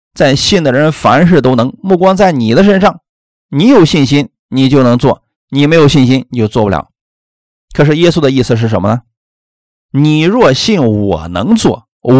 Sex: male